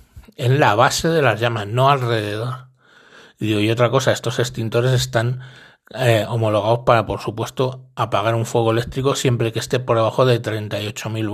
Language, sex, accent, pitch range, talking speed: Spanish, male, Spanish, 110-130 Hz, 160 wpm